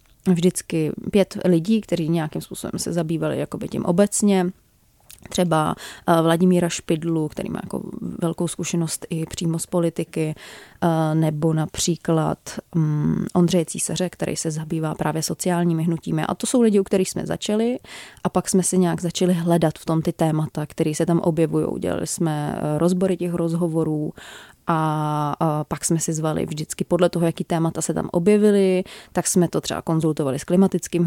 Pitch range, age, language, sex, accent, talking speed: 160-185 Hz, 30-49, Czech, female, native, 155 wpm